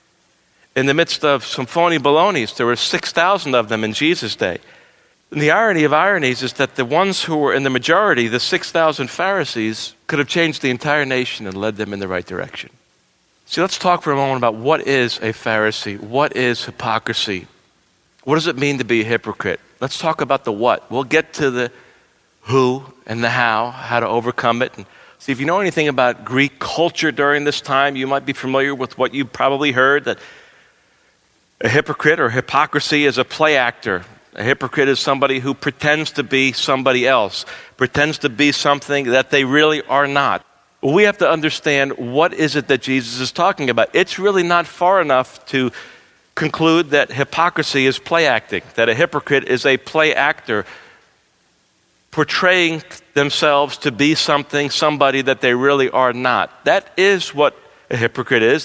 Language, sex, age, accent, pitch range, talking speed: English, male, 50-69, American, 130-155 Hz, 185 wpm